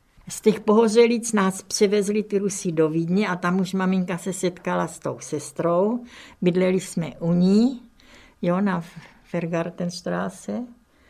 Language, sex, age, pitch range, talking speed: Czech, female, 60-79, 175-200 Hz, 135 wpm